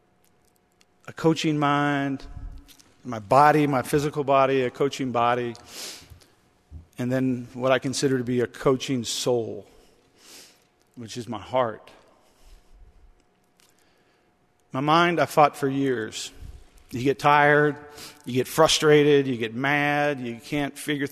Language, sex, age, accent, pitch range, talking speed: English, male, 50-69, American, 120-145 Hz, 120 wpm